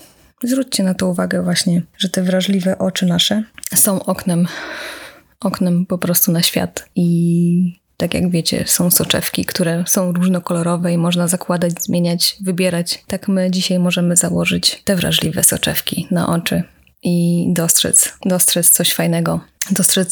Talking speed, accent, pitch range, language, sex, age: 140 wpm, native, 175-195 Hz, Polish, female, 20-39